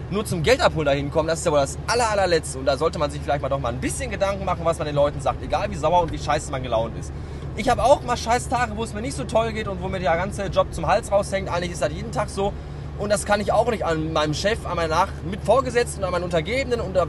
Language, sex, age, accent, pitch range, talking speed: German, male, 20-39, German, 120-170 Hz, 295 wpm